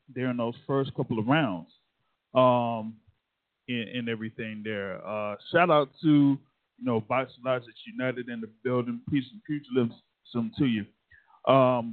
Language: English